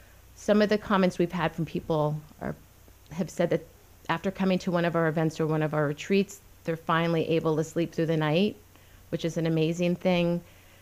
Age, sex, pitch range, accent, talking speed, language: 30-49, female, 155-180 Hz, American, 205 wpm, English